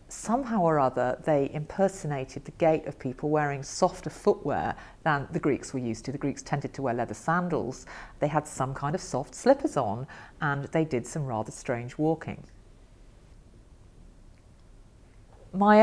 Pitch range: 125-155 Hz